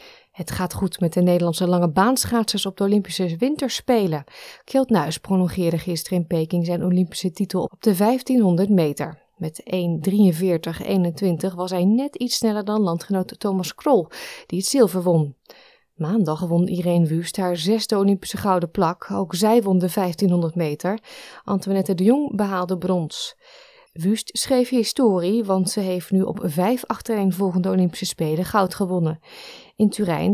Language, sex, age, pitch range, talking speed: Dutch, female, 20-39, 175-215 Hz, 150 wpm